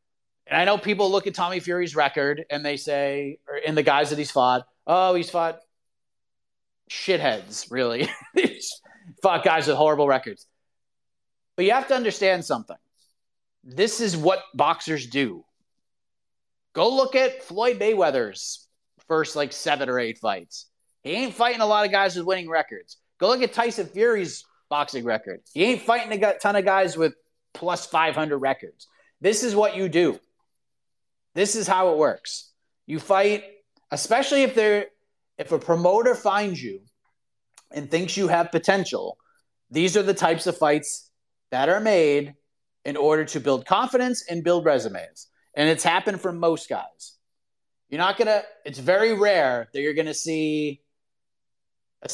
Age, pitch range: 30-49, 140-200 Hz